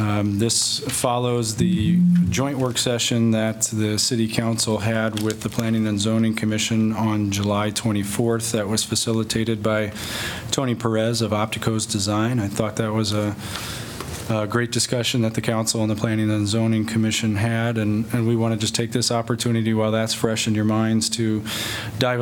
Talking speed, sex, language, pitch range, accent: 175 wpm, male, English, 110-115 Hz, American